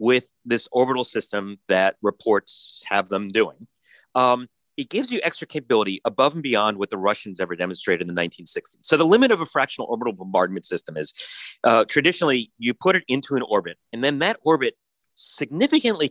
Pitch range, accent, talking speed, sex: 115-160 Hz, American, 185 wpm, male